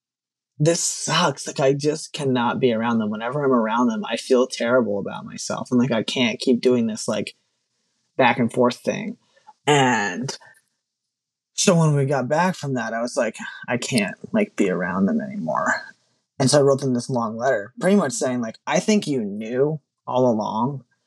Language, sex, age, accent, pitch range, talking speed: English, male, 20-39, American, 120-150 Hz, 190 wpm